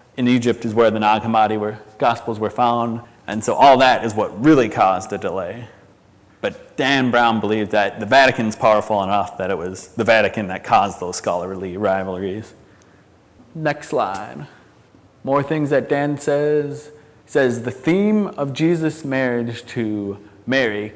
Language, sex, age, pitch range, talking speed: English, male, 30-49, 105-130 Hz, 160 wpm